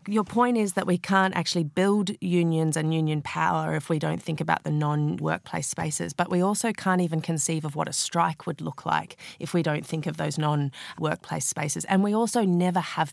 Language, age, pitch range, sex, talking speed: English, 30-49, 155-180 Hz, female, 220 wpm